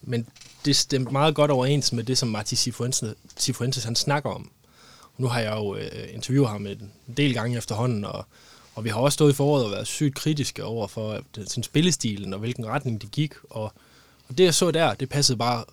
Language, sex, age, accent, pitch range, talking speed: Danish, male, 20-39, native, 110-140 Hz, 205 wpm